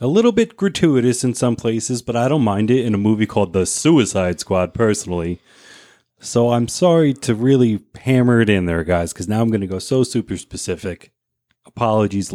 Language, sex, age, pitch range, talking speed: English, male, 30-49, 100-135 Hz, 195 wpm